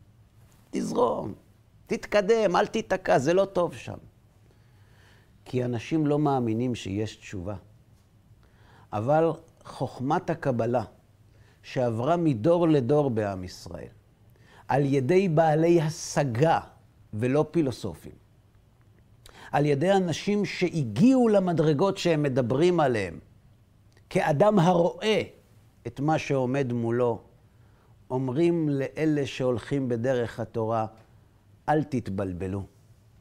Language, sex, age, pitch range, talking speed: Hebrew, male, 50-69, 110-165 Hz, 90 wpm